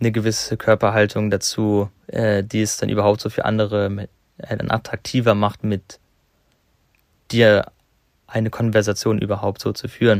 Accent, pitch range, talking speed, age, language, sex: German, 105-115 Hz, 135 wpm, 20-39, German, male